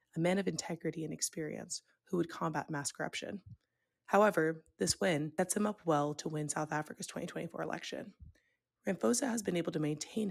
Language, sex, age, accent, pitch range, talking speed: English, female, 20-39, American, 150-185 Hz, 175 wpm